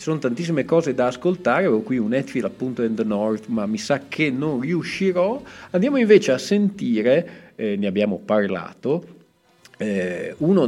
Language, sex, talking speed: Italian, male, 165 wpm